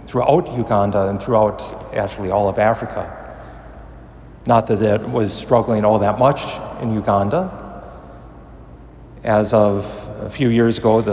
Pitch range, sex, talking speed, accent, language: 100-120 Hz, male, 130 wpm, American, English